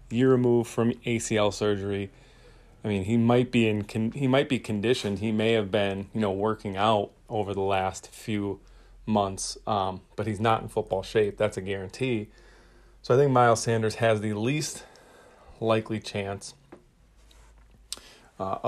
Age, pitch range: 30-49, 100-115 Hz